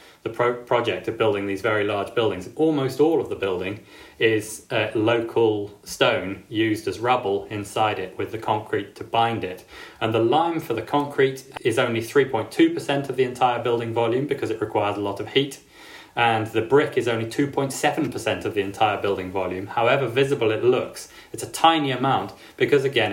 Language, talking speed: English, 180 wpm